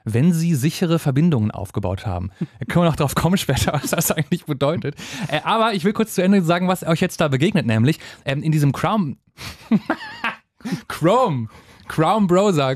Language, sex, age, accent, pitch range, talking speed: German, male, 30-49, German, 125-165 Hz, 180 wpm